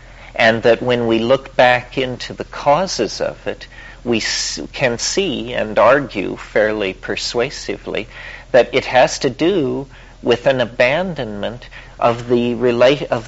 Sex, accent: male, American